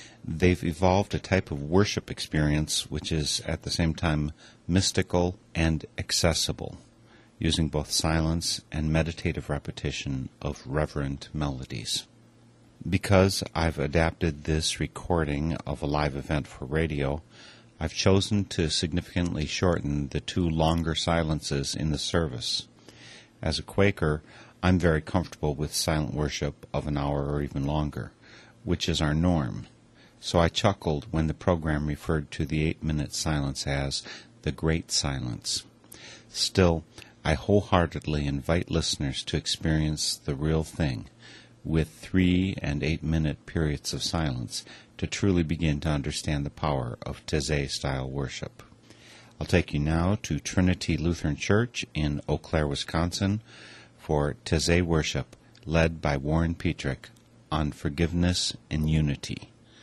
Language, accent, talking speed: English, American, 135 wpm